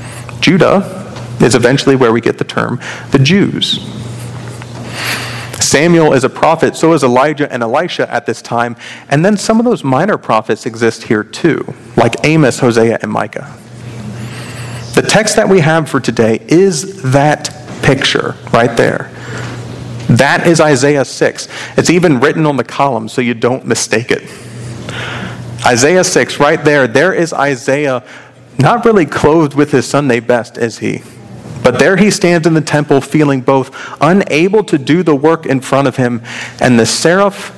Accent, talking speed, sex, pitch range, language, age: American, 165 wpm, male, 120-150 Hz, English, 40-59